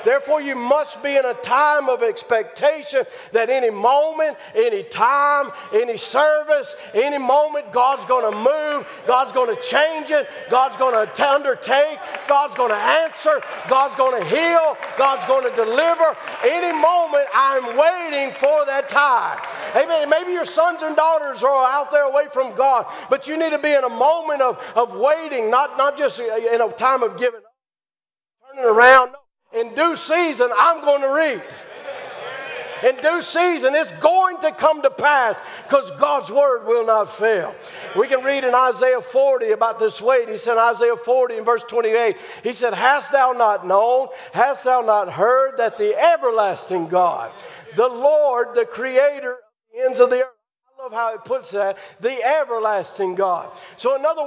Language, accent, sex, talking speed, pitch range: English, American, male, 175 wpm, 245-310 Hz